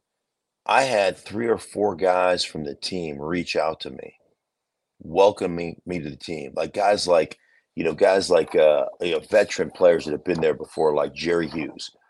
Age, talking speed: 40-59, 180 wpm